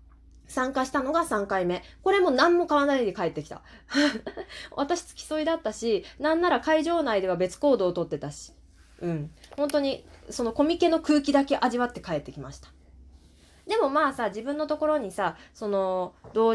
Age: 20-39